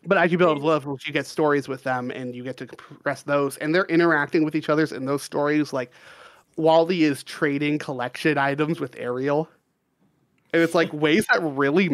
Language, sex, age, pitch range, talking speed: English, male, 30-49, 135-160 Hz, 195 wpm